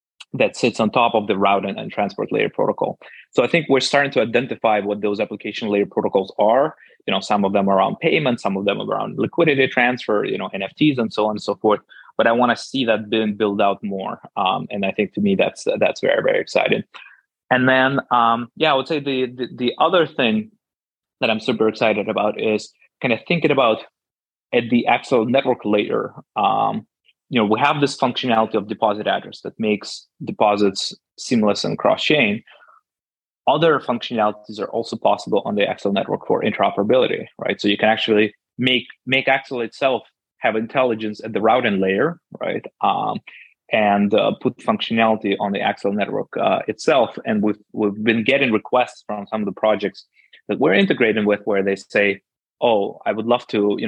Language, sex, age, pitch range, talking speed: English, male, 20-39, 105-130 Hz, 195 wpm